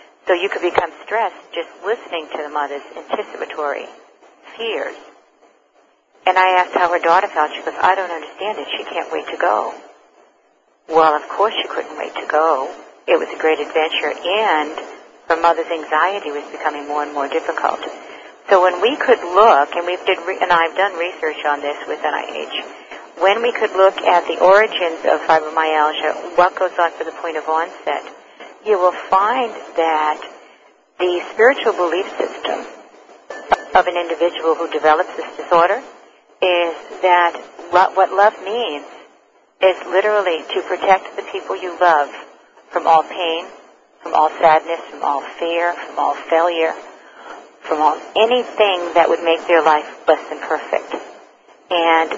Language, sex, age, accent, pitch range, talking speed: English, female, 50-69, American, 160-190 Hz, 160 wpm